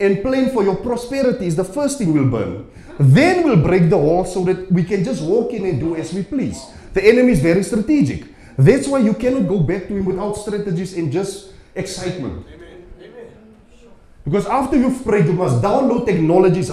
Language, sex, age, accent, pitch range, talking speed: English, male, 30-49, South African, 155-210 Hz, 195 wpm